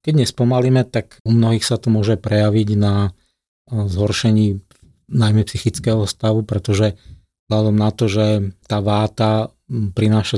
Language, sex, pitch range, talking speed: Slovak, male, 105-110 Hz, 125 wpm